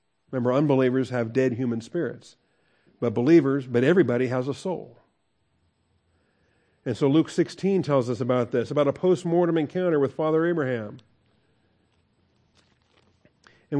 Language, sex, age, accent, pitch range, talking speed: English, male, 50-69, American, 115-155 Hz, 125 wpm